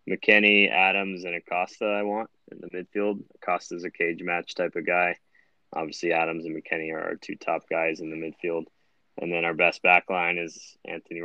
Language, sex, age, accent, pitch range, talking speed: English, male, 20-39, American, 80-90 Hz, 200 wpm